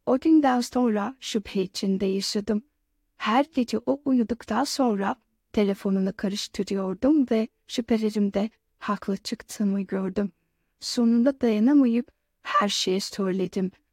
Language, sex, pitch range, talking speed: Turkish, female, 195-255 Hz, 100 wpm